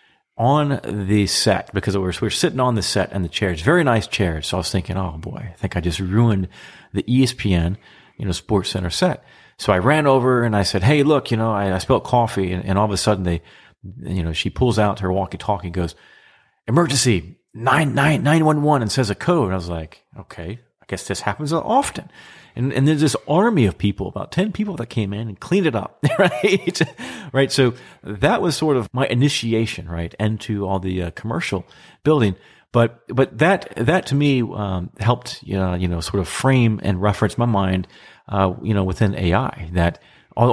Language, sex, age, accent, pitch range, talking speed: English, male, 40-59, American, 95-130 Hz, 210 wpm